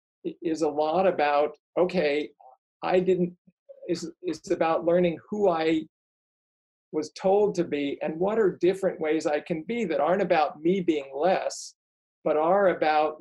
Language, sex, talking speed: English, male, 155 wpm